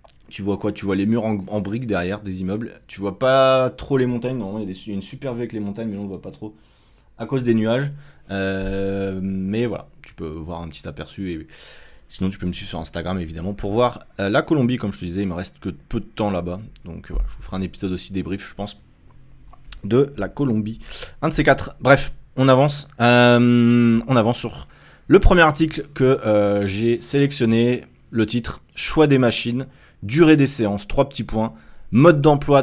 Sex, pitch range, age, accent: male, 95-125 Hz, 20-39, French